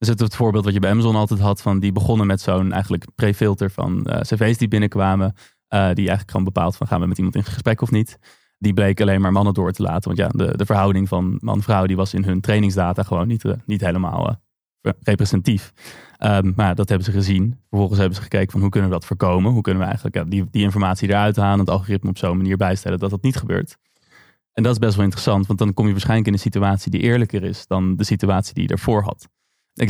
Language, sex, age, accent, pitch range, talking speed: Dutch, male, 20-39, Dutch, 95-110 Hz, 245 wpm